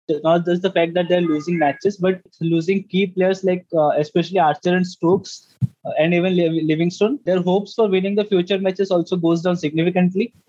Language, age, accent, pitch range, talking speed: English, 20-39, Indian, 165-190 Hz, 195 wpm